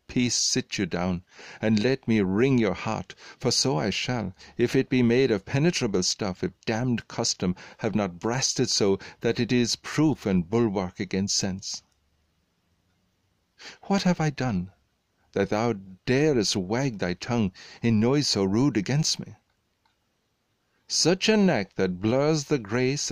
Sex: male